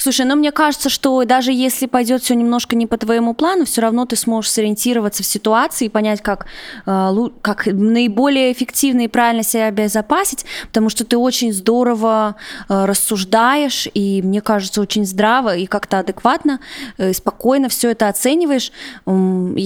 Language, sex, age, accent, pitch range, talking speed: Russian, female, 20-39, native, 200-250 Hz, 150 wpm